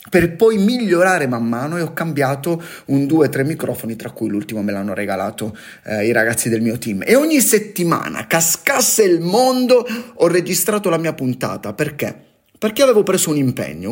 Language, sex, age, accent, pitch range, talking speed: Italian, male, 30-49, native, 115-175 Hz, 175 wpm